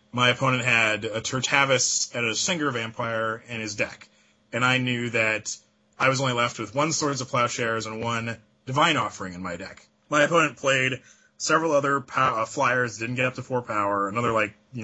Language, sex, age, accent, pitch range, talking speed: English, male, 30-49, American, 105-130 Hz, 190 wpm